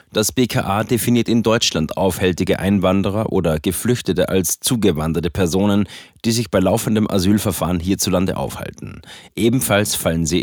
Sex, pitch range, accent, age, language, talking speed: male, 90-110 Hz, German, 30-49, German, 125 wpm